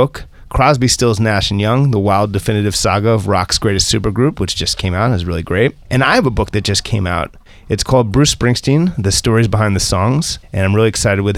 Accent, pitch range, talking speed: American, 105-135 Hz, 235 wpm